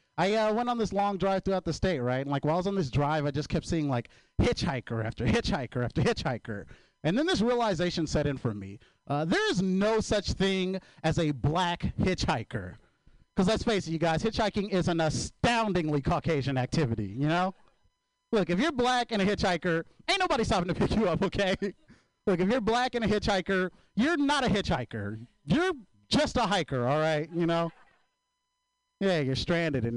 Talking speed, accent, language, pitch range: 200 wpm, American, English, 145-195 Hz